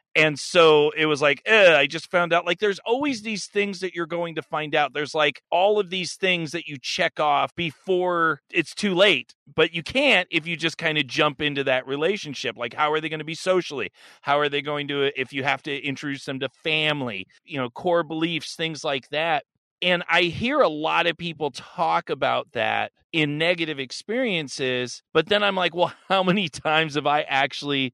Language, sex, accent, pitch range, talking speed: English, male, American, 135-175 Hz, 210 wpm